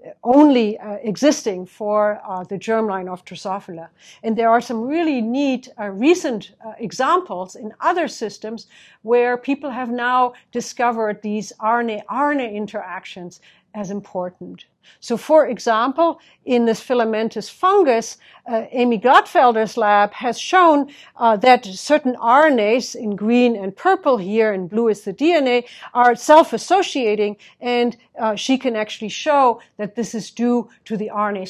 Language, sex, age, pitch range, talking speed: English, female, 50-69, 205-255 Hz, 145 wpm